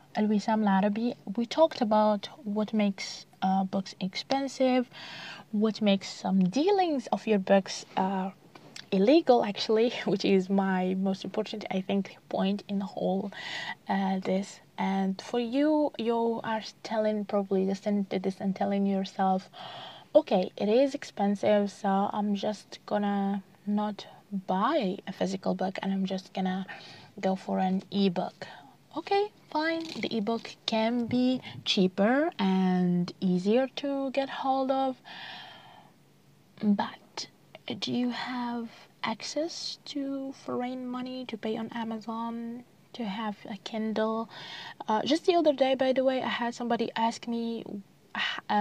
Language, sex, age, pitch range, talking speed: English, female, 20-39, 195-235 Hz, 135 wpm